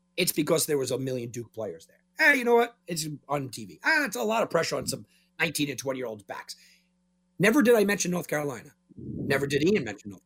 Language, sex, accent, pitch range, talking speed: English, male, American, 145-180 Hz, 230 wpm